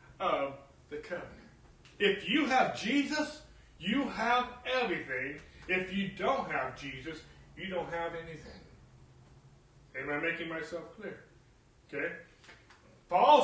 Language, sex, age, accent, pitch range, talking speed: English, male, 40-59, American, 145-205 Hz, 115 wpm